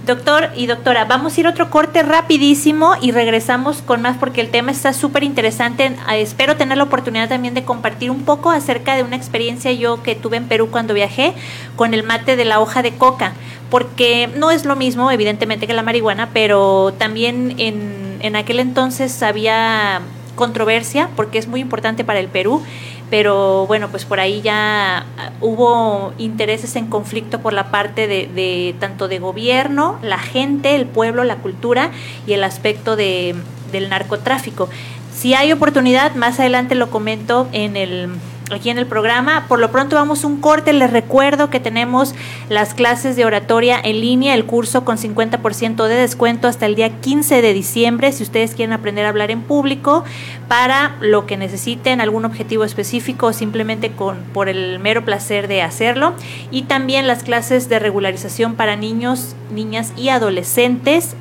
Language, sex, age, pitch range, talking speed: Spanish, female, 30-49, 210-260 Hz, 175 wpm